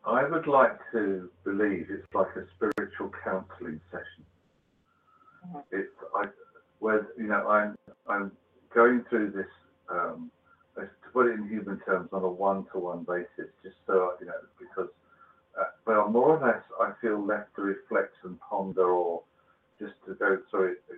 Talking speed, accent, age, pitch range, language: 155 wpm, British, 50-69, 90-110 Hz, English